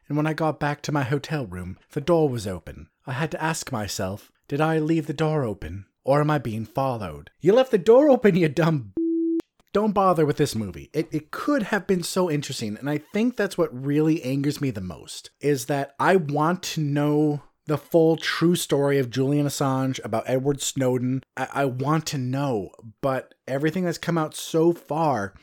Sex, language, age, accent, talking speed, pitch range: male, English, 30-49, American, 205 wpm, 130-170 Hz